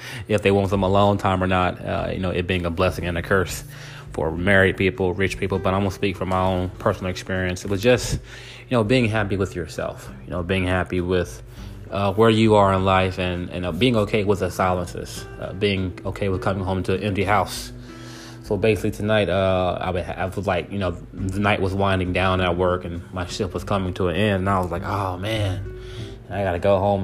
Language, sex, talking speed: English, male, 240 wpm